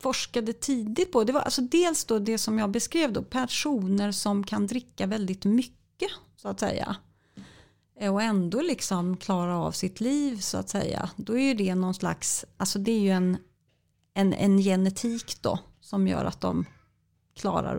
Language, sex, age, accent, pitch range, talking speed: Swedish, female, 30-49, native, 180-240 Hz, 170 wpm